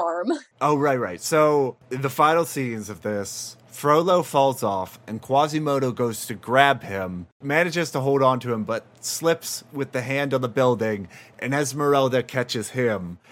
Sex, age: male, 30-49